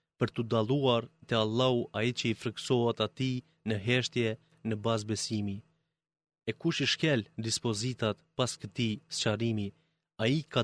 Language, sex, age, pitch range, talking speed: Greek, male, 30-49, 115-145 Hz, 145 wpm